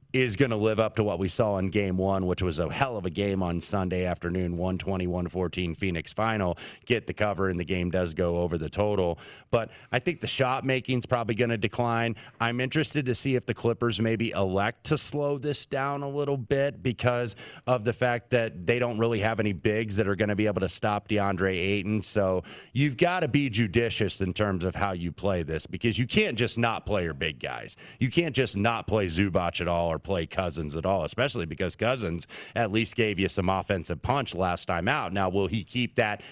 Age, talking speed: 30-49, 230 wpm